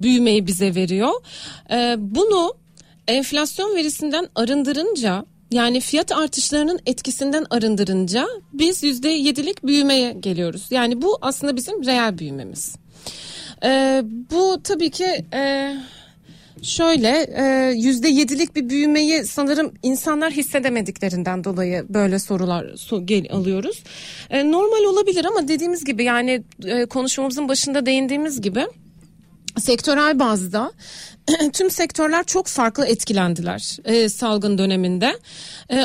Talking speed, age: 110 wpm, 40-59